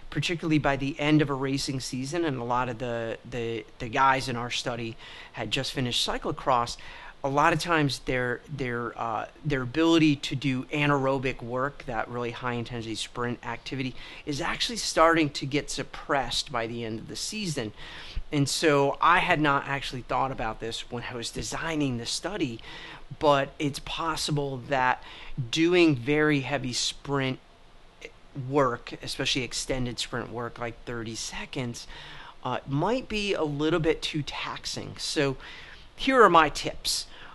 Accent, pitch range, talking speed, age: American, 125-155 Hz, 155 wpm, 30-49